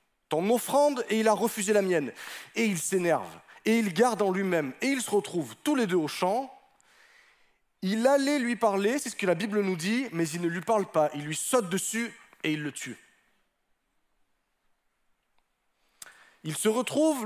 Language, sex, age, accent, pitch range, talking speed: French, male, 30-49, French, 175-240 Hz, 185 wpm